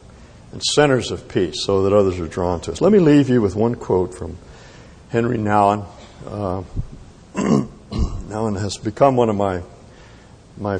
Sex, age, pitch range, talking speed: male, 60-79, 95-120 Hz, 160 wpm